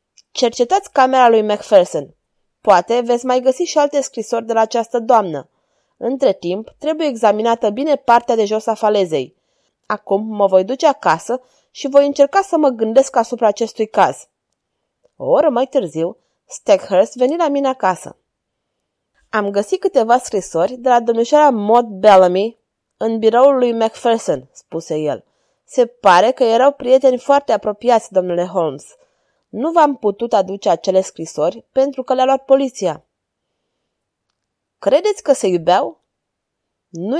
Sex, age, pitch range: female, 20-39, 200-270 Hz